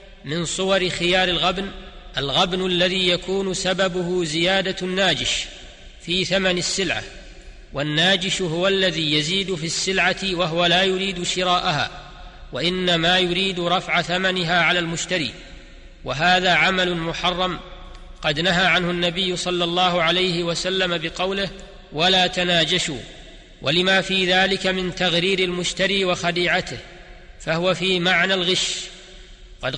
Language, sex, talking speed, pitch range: Arabic, male, 115 wpm, 175-190 Hz